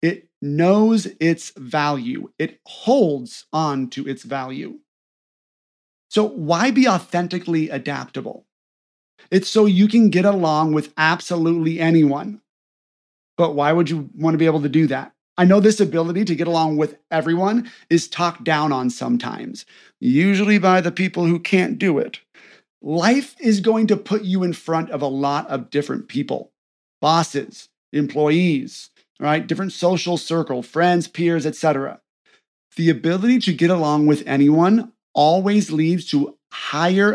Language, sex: English, male